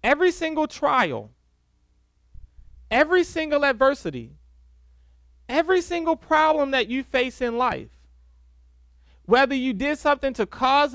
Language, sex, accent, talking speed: English, male, American, 110 wpm